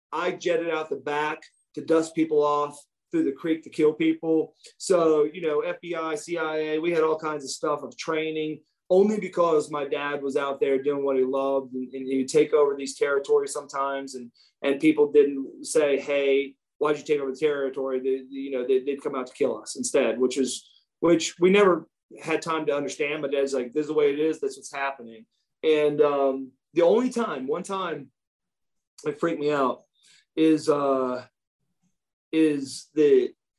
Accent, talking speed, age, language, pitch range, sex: American, 195 wpm, 30-49, English, 140-170 Hz, male